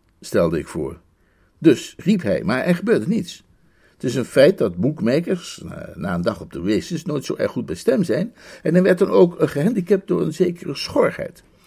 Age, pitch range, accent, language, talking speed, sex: 60-79, 155-205 Hz, Dutch, Dutch, 200 wpm, male